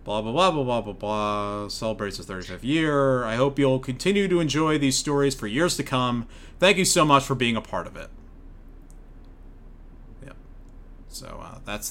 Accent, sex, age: American, male, 30-49